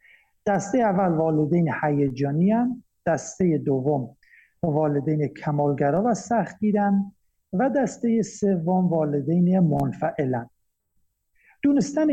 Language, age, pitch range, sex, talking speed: Persian, 50-69, 155-205 Hz, male, 85 wpm